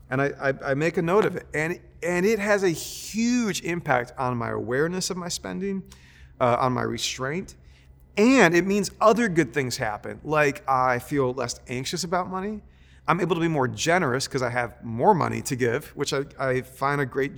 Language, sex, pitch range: English, male, 120-170 Hz